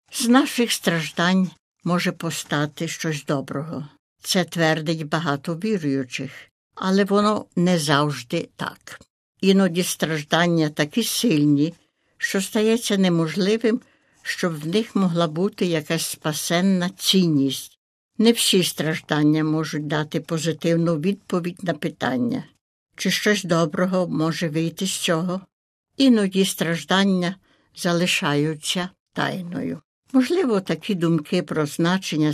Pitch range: 160-200 Hz